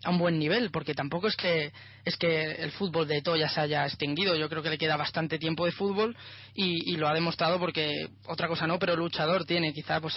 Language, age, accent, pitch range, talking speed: Spanish, 20-39, Spanish, 155-180 Hz, 240 wpm